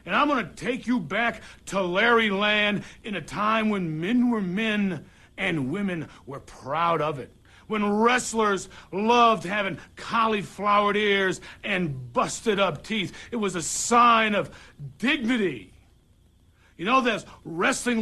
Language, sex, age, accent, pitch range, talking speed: English, male, 60-79, American, 190-255 Hz, 145 wpm